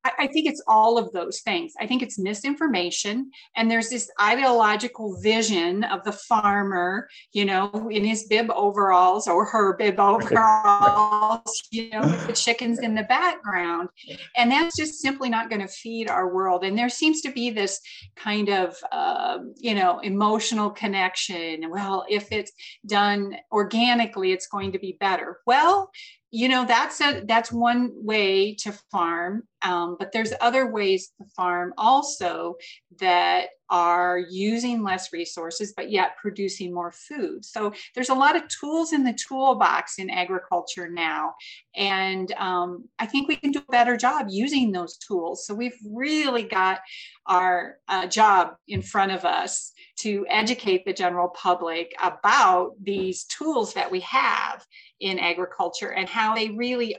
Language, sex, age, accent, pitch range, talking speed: English, female, 40-59, American, 185-240 Hz, 160 wpm